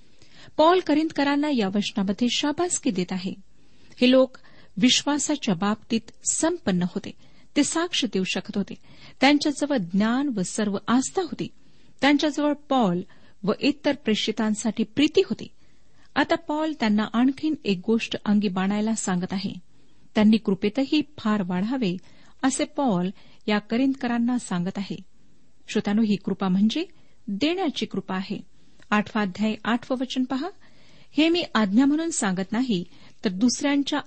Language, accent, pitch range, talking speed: Marathi, native, 205-285 Hz, 120 wpm